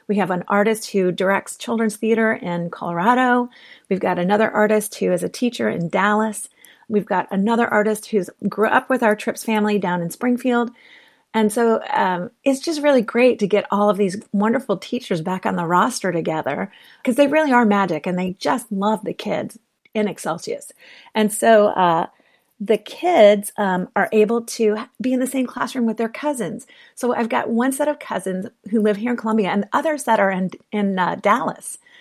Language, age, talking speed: English, 40-59, 195 wpm